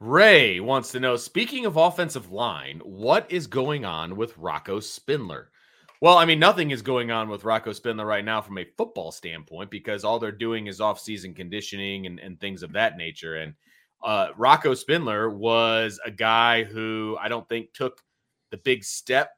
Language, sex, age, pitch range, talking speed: English, male, 30-49, 105-135 Hz, 185 wpm